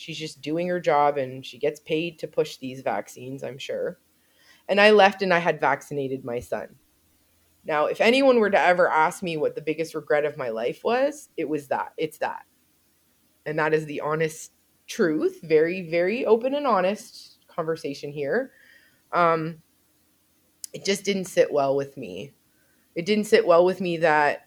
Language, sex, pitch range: English, female, 150-210 Hz